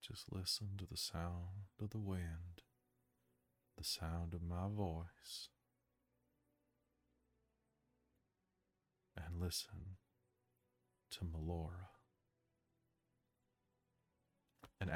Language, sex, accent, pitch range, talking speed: English, male, American, 85-115 Hz, 70 wpm